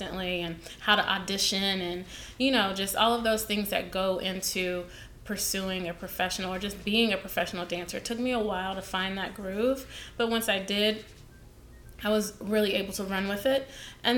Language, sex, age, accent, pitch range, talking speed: English, female, 20-39, American, 185-215 Hz, 195 wpm